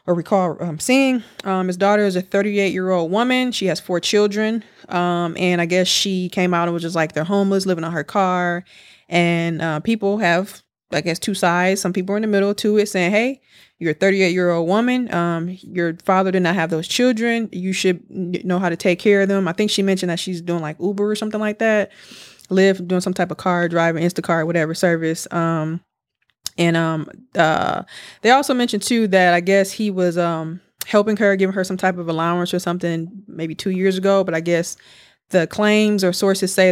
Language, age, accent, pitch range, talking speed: English, 20-39, American, 170-200 Hz, 220 wpm